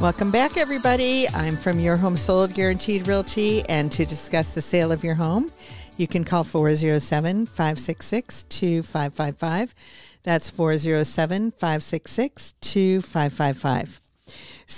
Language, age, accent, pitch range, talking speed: English, 50-69, American, 160-185 Hz, 95 wpm